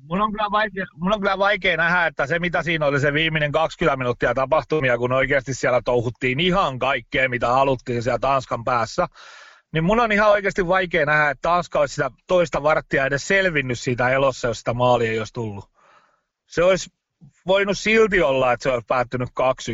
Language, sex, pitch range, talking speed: Finnish, male, 135-190 Hz, 190 wpm